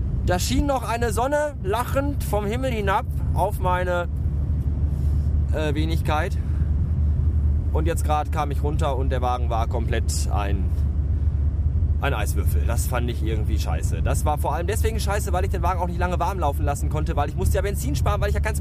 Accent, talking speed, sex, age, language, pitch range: German, 190 wpm, male, 20-39, German, 70-80 Hz